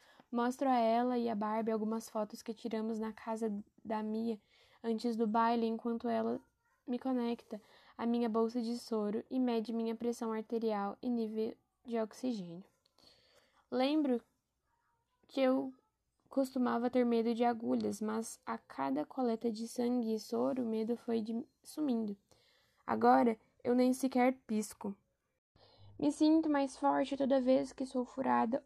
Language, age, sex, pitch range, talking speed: Portuguese, 10-29, female, 225-260 Hz, 145 wpm